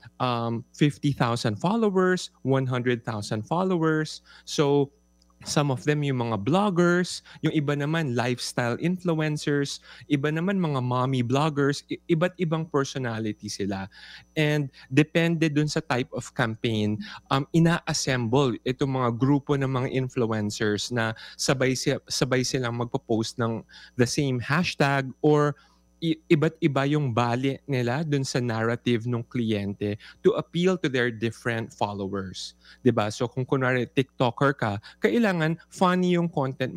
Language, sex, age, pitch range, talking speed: Filipino, male, 20-39, 120-155 Hz, 125 wpm